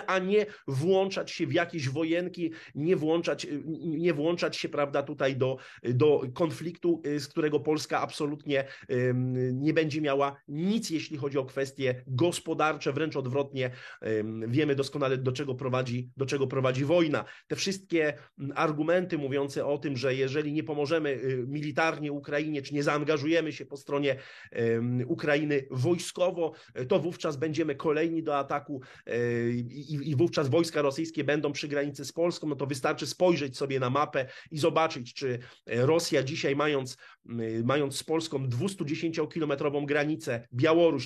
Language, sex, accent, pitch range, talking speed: Polish, male, native, 135-165 Hz, 140 wpm